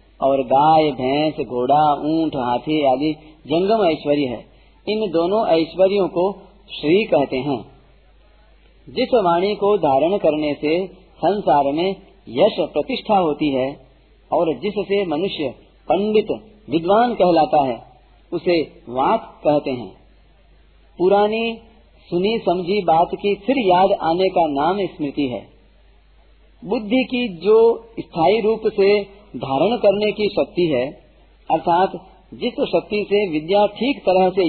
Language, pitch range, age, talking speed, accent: Hindi, 155-210 Hz, 40-59, 125 wpm, native